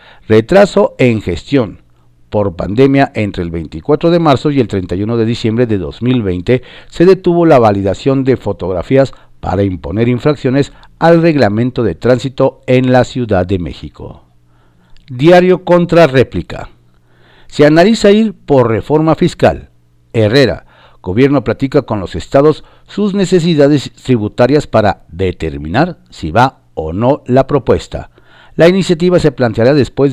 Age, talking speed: 50-69, 130 wpm